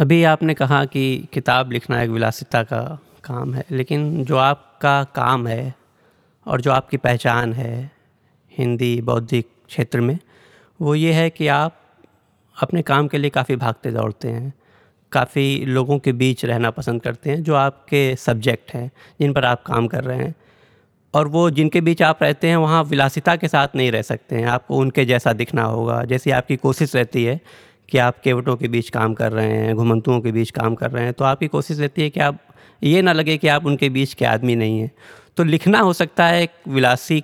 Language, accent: Hindi, native